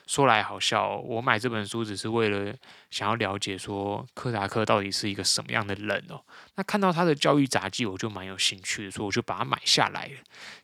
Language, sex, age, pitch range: Chinese, male, 20-39, 105-145 Hz